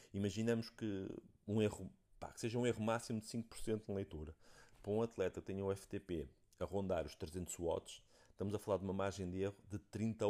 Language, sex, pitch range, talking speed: Portuguese, male, 95-115 Hz, 210 wpm